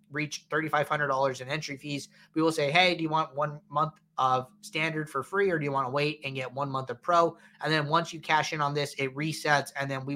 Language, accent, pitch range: English, American, 135-180 Hz